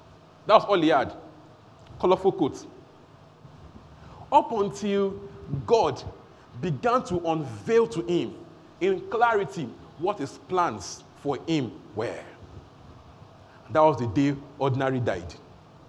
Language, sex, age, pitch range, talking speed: English, male, 40-59, 145-230 Hz, 105 wpm